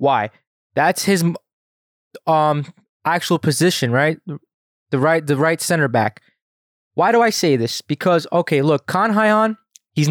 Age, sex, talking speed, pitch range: 20-39, male, 140 wpm, 135-175 Hz